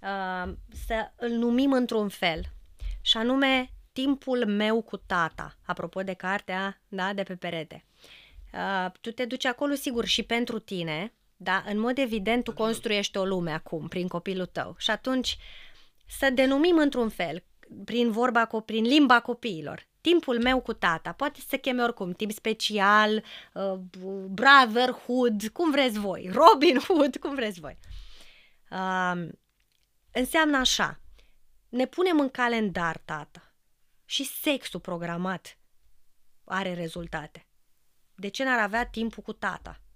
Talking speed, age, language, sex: 140 wpm, 20-39, Romanian, female